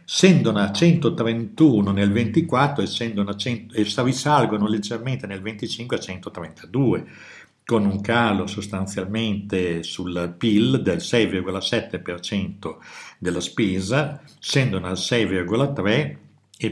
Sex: male